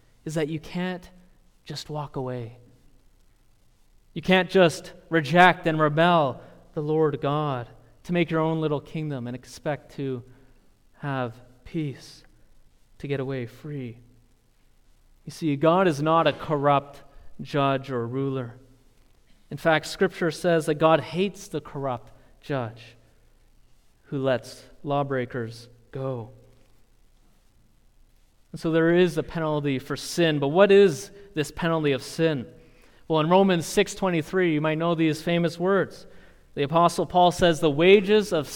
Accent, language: American, English